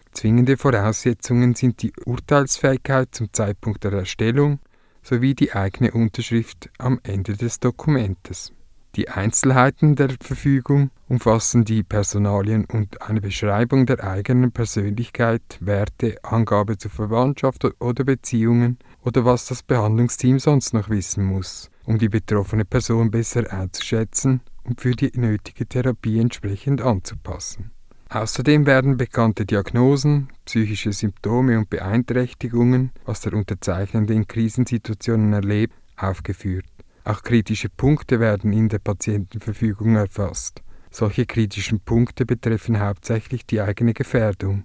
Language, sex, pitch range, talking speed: English, male, 105-125 Hz, 120 wpm